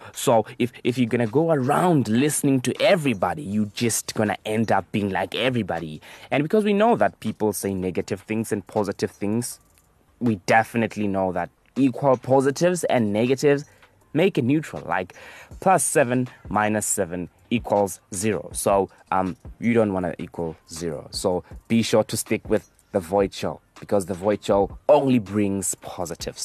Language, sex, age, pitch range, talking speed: English, male, 20-39, 100-145 Hz, 170 wpm